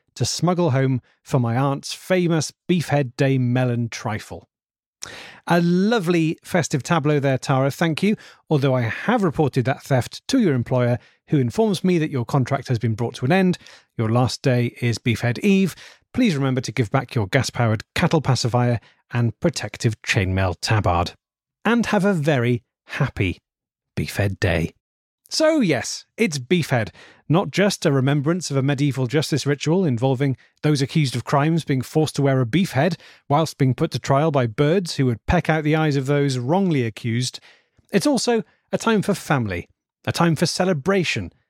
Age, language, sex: 30-49, English, male